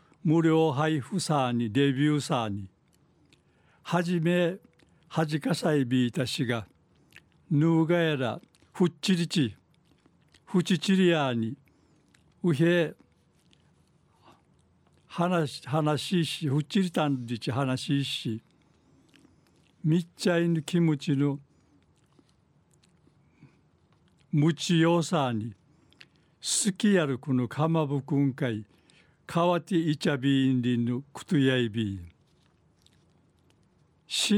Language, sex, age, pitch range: Japanese, male, 60-79, 135-170 Hz